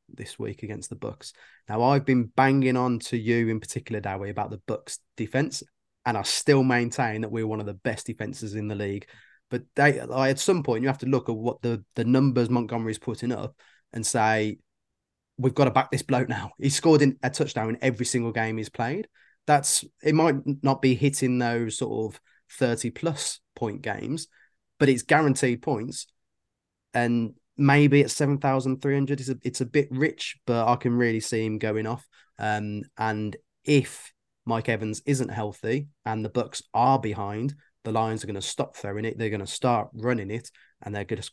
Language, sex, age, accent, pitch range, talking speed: English, male, 20-39, British, 105-130 Hz, 200 wpm